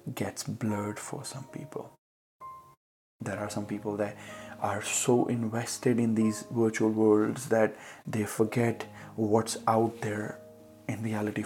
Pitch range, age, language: 105-115 Hz, 20-39, Hindi